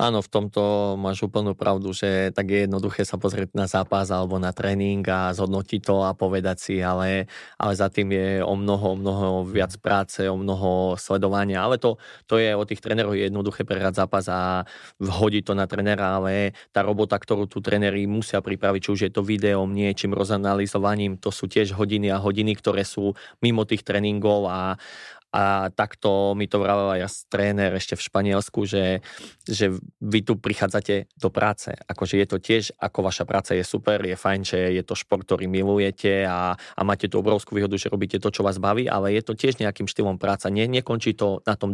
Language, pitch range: Slovak, 95-105 Hz